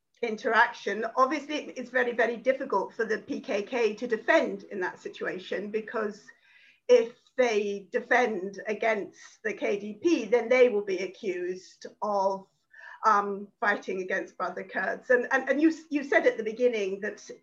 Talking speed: 145 wpm